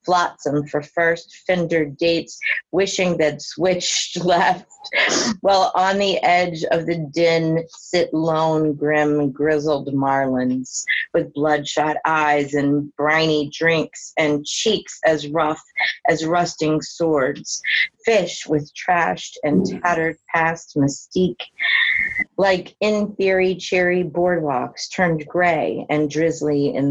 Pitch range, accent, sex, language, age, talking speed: 150-180 Hz, American, female, English, 40-59, 115 wpm